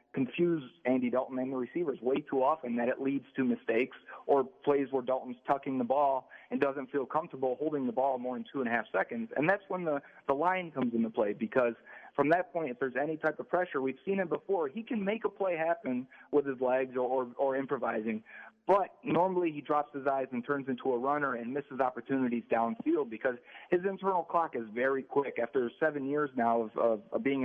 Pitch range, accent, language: 125-170 Hz, American, English